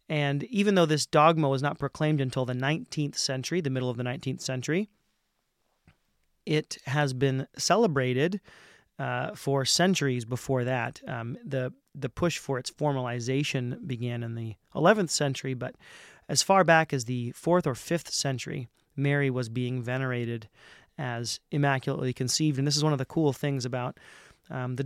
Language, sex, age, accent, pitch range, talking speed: English, male, 30-49, American, 125-150 Hz, 160 wpm